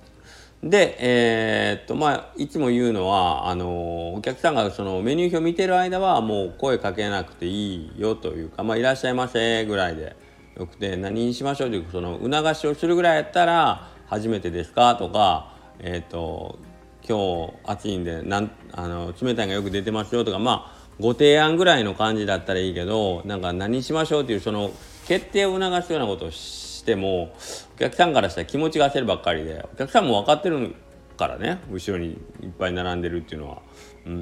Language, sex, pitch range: Japanese, male, 90-125 Hz